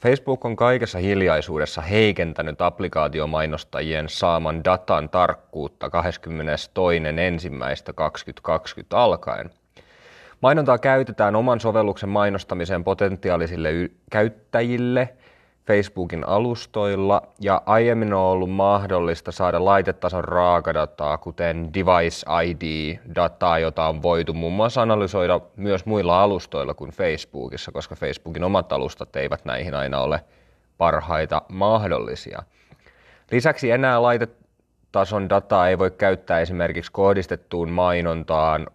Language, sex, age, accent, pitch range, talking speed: Finnish, male, 30-49, native, 85-100 Hz, 100 wpm